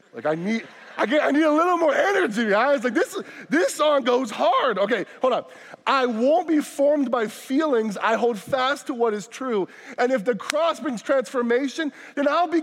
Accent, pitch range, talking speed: American, 165-275 Hz, 210 wpm